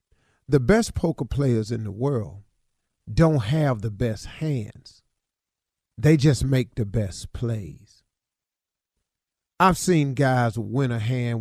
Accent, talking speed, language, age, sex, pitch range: American, 125 wpm, English, 40-59, male, 115-155 Hz